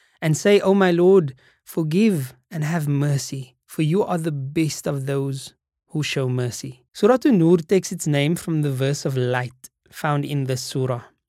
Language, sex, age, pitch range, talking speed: English, male, 20-39, 140-175 Hz, 175 wpm